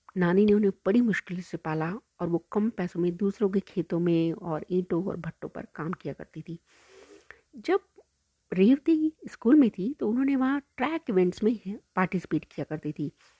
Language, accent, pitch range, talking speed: Hindi, native, 175-230 Hz, 180 wpm